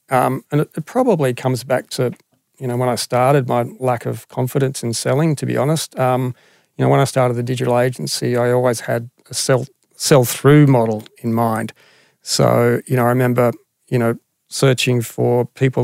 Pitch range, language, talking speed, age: 120-145 Hz, English, 190 wpm, 40-59